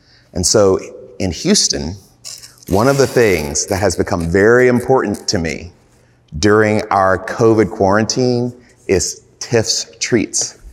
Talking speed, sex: 125 wpm, male